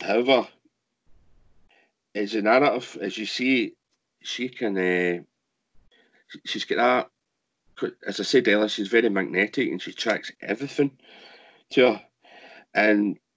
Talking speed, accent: 120 wpm, British